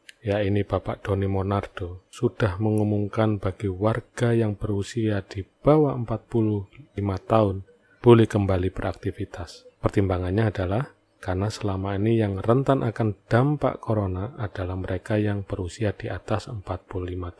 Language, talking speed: Indonesian, 120 wpm